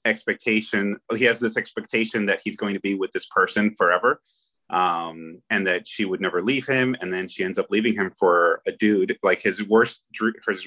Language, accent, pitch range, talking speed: English, American, 90-115 Hz, 200 wpm